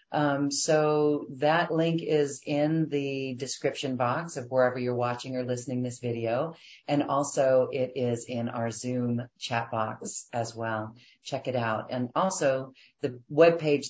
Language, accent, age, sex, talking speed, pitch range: English, American, 40-59, female, 150 wpm, 120-145 Hz